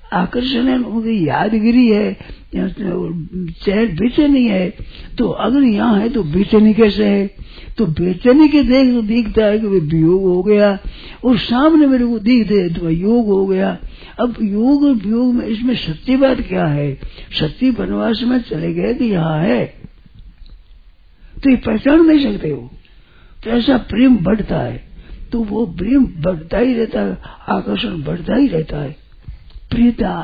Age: 50-69